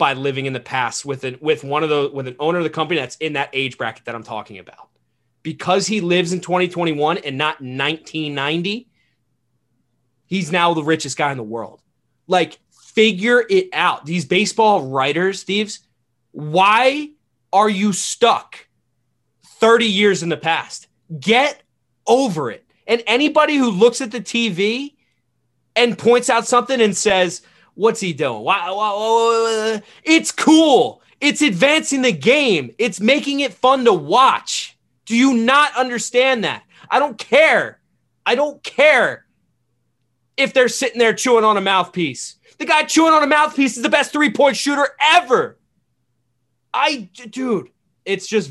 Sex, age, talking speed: male, 30-49, 160 wpm